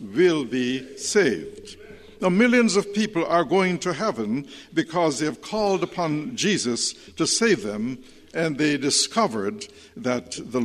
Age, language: 60-79, English